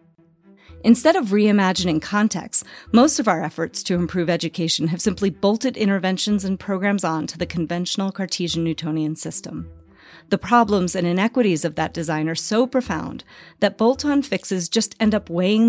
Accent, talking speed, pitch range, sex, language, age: American, 155 wpm, 170-215 Hz, female, English, 40-59